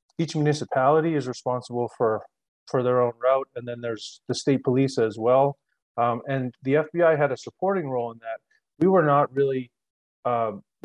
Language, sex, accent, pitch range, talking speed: English, male, American, 115-135 Hz, 175 wpm